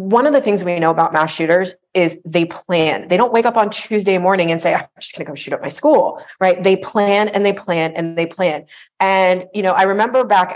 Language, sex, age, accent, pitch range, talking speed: English, female, 40-59, American, 170-210 Hz, 255 wpm